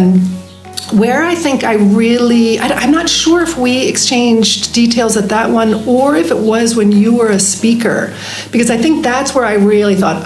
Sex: female